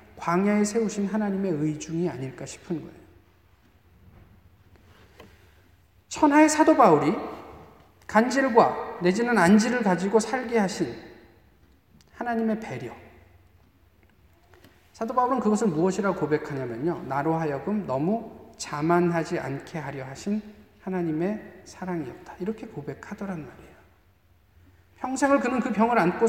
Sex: male